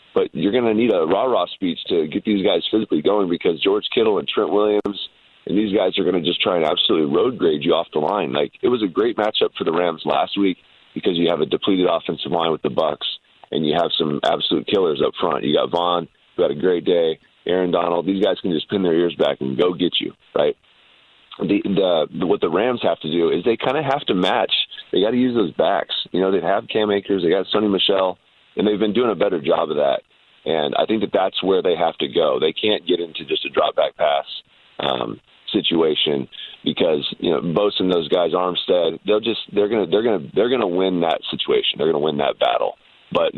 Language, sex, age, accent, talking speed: English, male, 30-49, American, 240 wpm